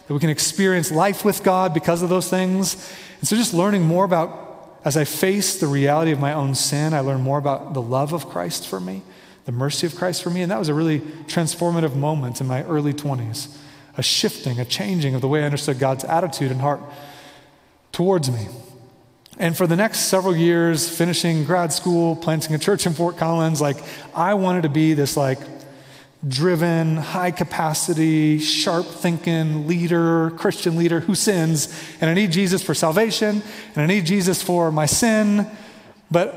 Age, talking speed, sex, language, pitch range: 30-49, 185 wpm, male, English, 140-175 Hz